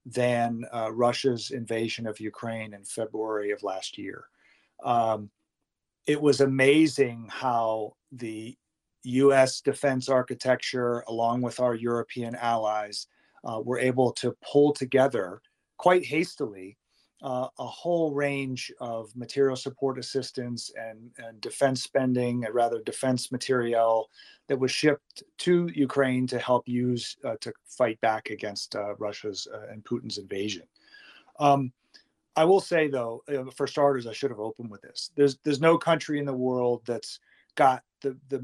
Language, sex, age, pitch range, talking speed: English, male, 40-59, 120-140 Hz, 145 wpm